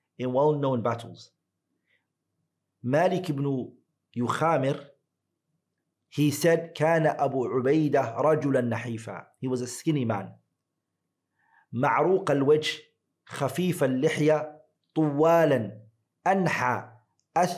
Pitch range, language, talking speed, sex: 120-155 Hz, English, 60 wpm, male